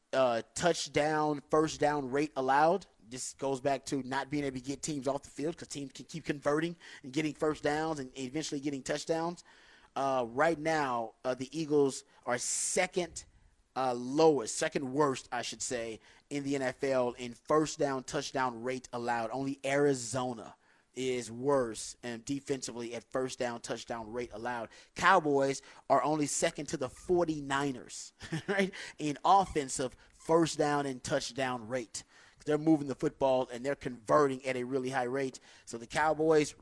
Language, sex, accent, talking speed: English, male, American, 160 wpm